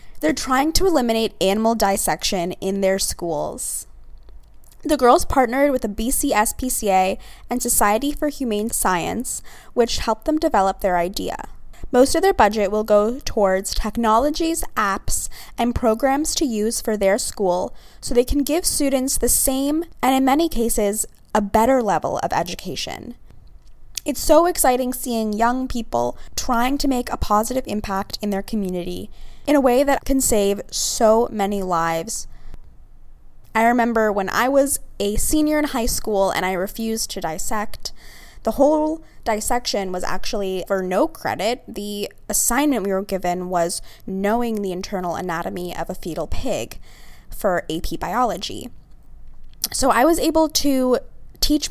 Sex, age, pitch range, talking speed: female, 20-39, 200-270 Hz, 150 wpm